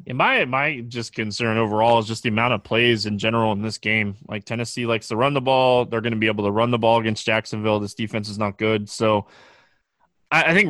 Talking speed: 240 wpm